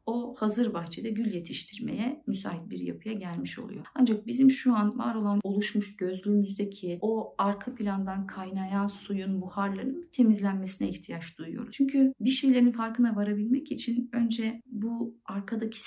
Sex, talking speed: female, 135 wpm